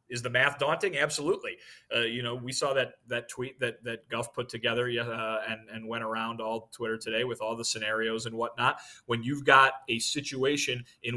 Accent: American